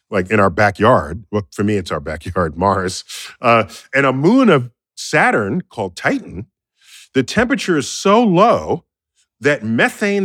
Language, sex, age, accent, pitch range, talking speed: English, male, 40-59, American, 105-175 Hz, 150 wpm